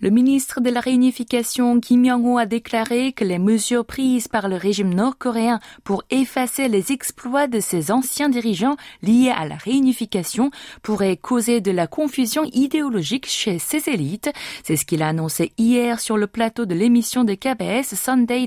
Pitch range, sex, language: 200-255 Hz, female, French